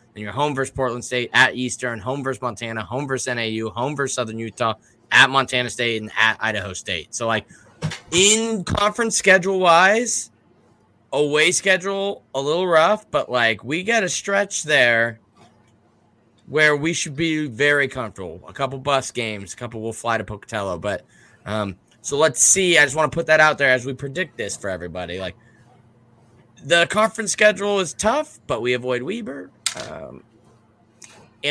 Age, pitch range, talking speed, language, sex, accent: 20-39, 115-145 Hz, 170 wpm, English, male, American